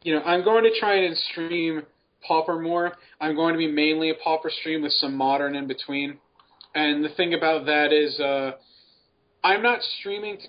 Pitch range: 145-170 Hz